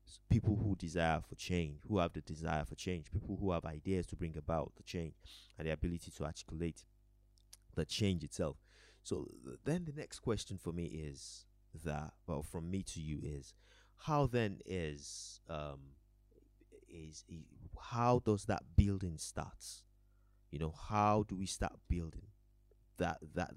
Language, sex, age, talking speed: English, male, 20-39, 160 wpm